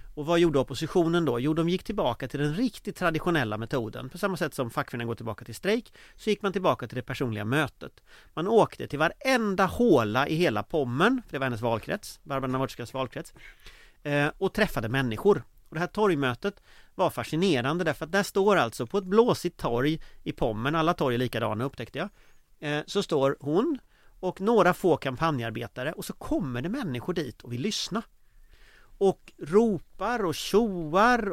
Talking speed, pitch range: 175 wpm, 135-205 Hz